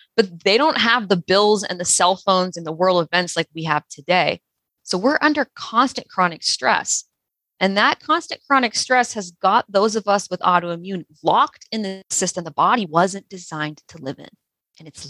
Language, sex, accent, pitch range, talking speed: English, female, American, 155-220 Hz, 195 wpm